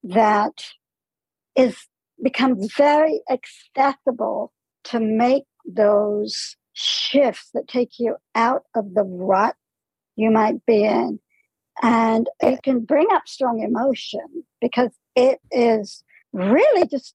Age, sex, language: 60-79, male, English